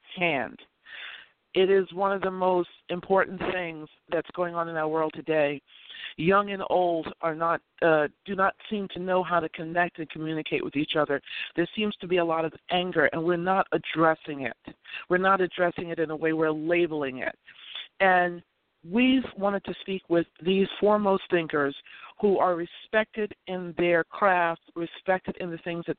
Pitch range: 165-200 Hz